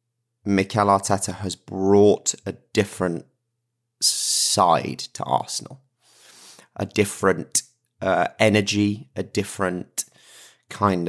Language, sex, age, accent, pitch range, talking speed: English, male, 20-39, British, 90-120 Hz, 85 wpm